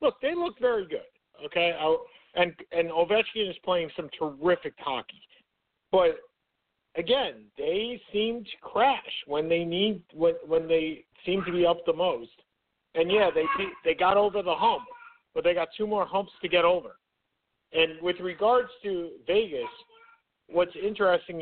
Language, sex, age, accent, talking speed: English, male, 50-69, American, 160 wpm